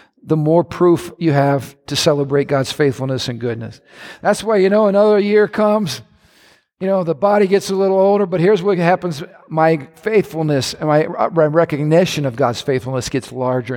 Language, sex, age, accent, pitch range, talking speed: English, male, 50-69, American, 160-210 Hz, 175 wpm